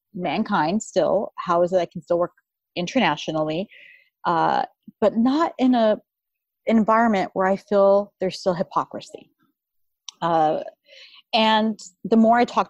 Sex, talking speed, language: female, 135 wpm, English